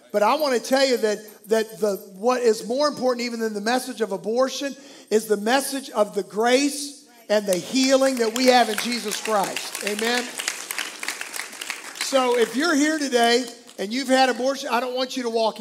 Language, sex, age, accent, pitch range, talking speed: English, male, 50-69, American, 225-270 Hz, 190 wpm